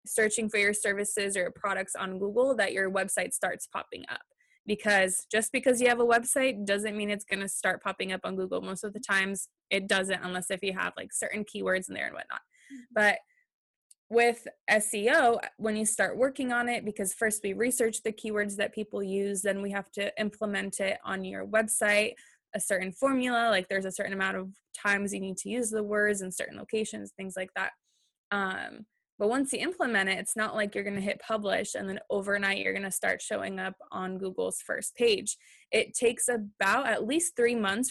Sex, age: female, 20-39